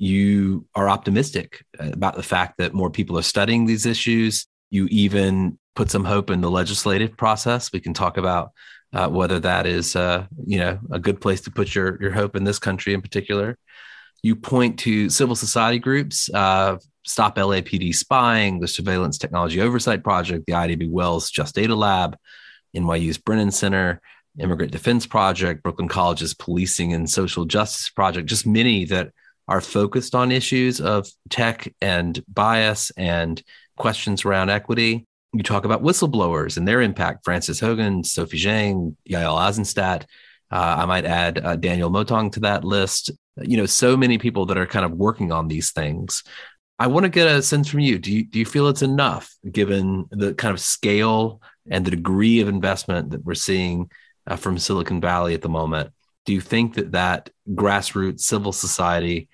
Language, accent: English, American